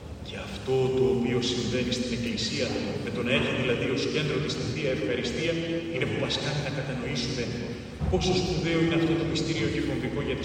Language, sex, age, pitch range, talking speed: Greek, male, 30-49, 120-185 Hz, 185 wpm